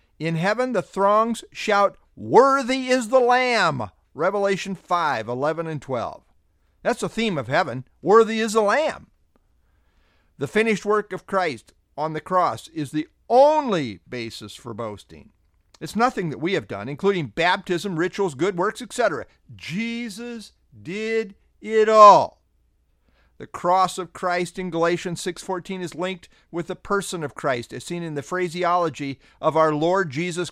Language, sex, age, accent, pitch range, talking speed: English, male, 50-69, American, 140-195 Hz, 150 wpm